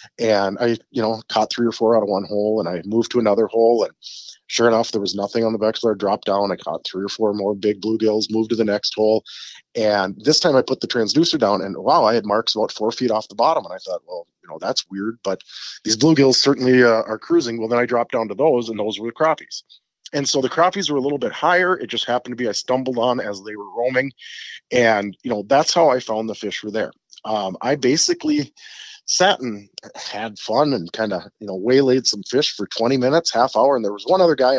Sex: male